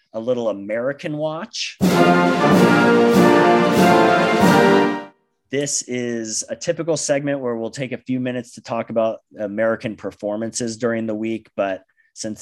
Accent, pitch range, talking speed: American, 100-125 Hz, 120 wpm